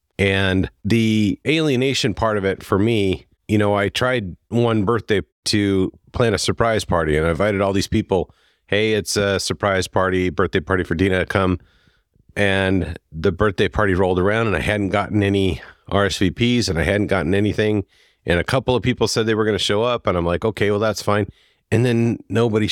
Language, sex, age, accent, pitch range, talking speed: English, male, 40-59, American, 95-115 Hz, 200 wpm